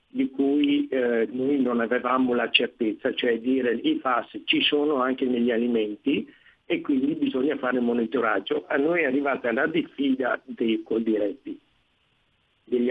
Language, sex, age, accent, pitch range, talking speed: Italian, male, 50-69, native, 115-170 Hz, 145 wpm